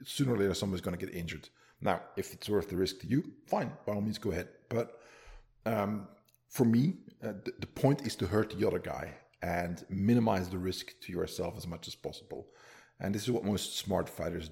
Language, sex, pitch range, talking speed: English, male, 95-115 Hz, 215 wpm